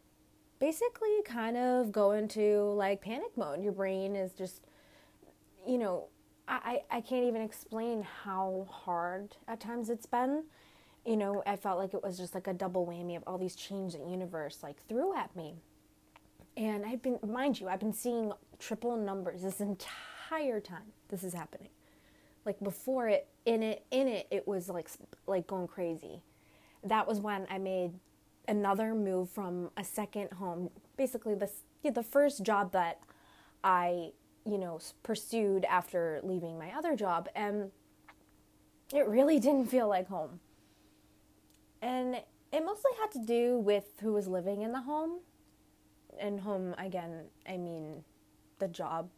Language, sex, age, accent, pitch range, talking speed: English, female, 20-39, American, 185-235 Hz, 160 wpm